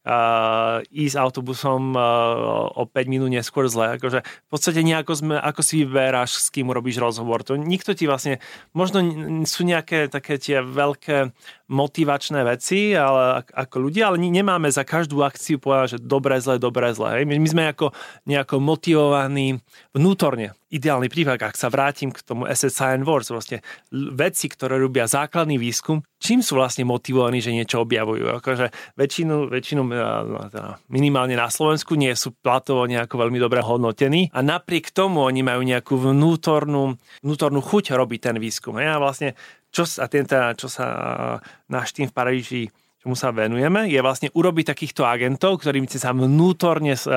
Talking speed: 150 wpm